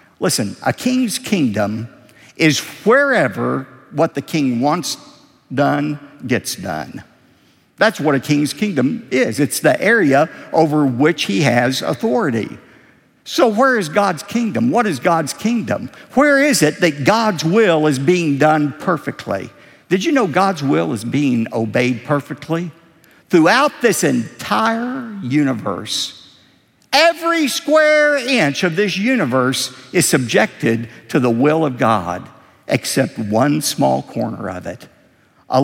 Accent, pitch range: American, 135-225 Hz